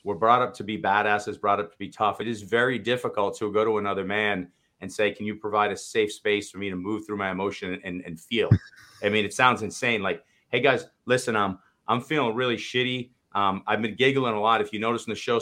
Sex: male